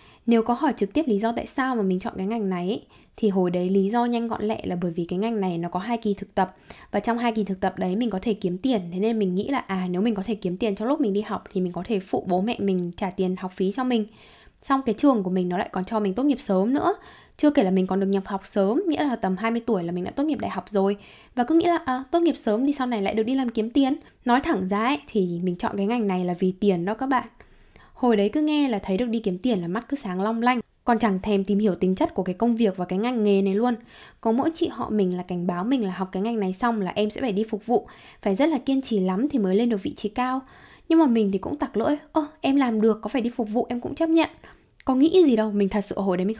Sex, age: female, 10-29